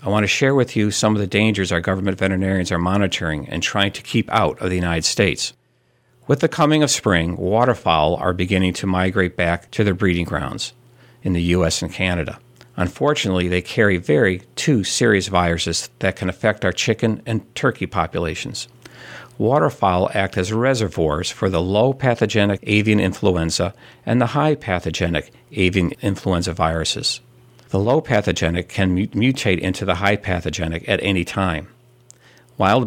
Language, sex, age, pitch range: English, male, 50-69, 90-115 Hz